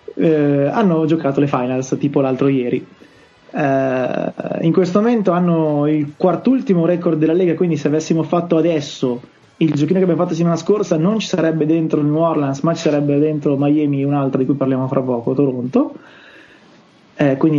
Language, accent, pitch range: Italian, native, 140-160 Hz